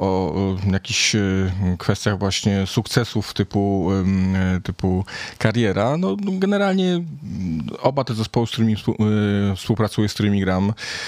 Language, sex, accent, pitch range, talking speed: Polish, male, native, 95-115 Hz, 105 wpm